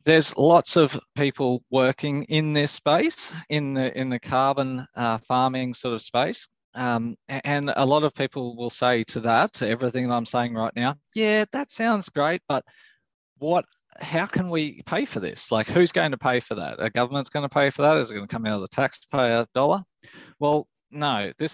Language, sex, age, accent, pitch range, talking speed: English, male, 20-39, Australian, 115-145 Hz, 205 wpm